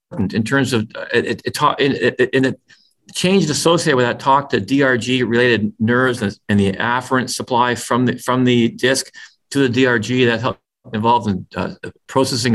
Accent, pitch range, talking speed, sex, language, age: American, 120-160 Hz, 190 wpm, male, English, 50-69